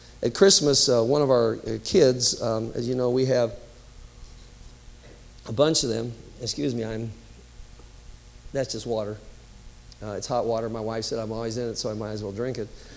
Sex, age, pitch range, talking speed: male, 50-69, 115-150 Hz, 190 wpm